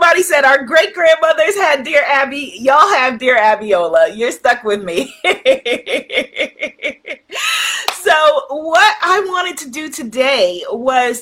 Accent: American